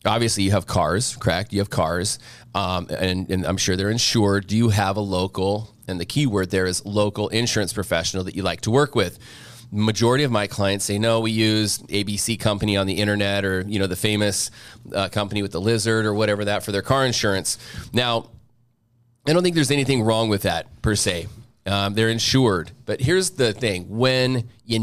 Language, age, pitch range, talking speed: English, 30-49, 100-120 Hz, 205 wpm